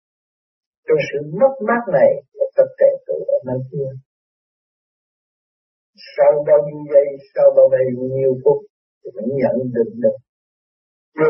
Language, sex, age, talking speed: Vietnamese, male, 60-79, 125 wpm